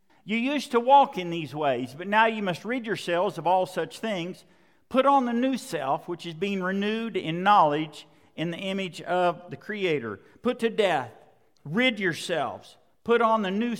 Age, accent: 50-69, American